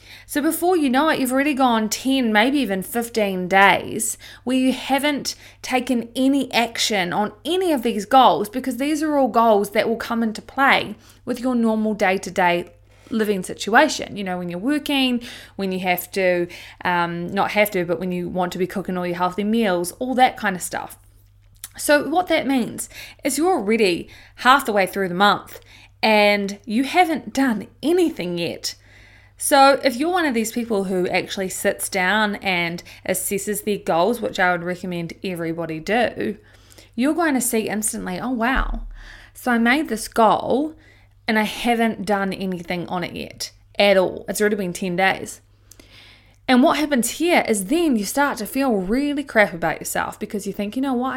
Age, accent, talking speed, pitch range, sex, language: 20-39, Australian, 185 wpm, 180-255 Hz, female, English